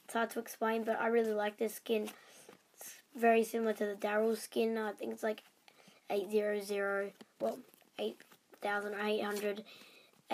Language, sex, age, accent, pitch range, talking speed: English, female, 20-39, Australian, 210-230 Hz, 155 wpm